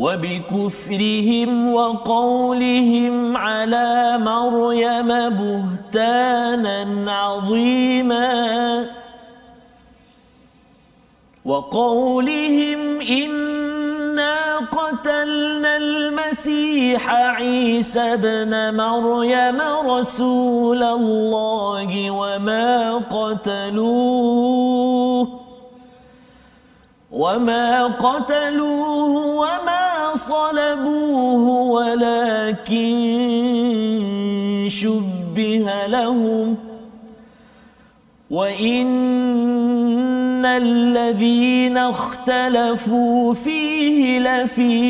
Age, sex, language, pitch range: 40-59, male, Malayalam, 230-270 Hz